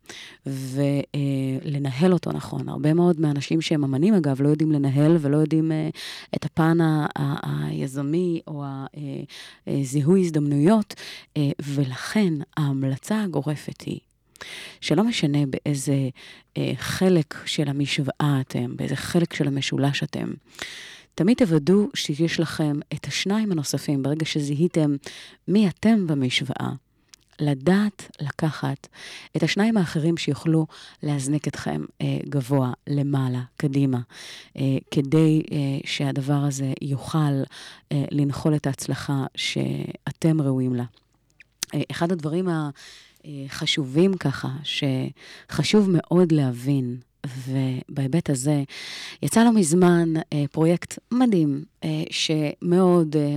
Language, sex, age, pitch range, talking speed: Hebrew, female, 30-49, 140-165 Hz, 115 wpm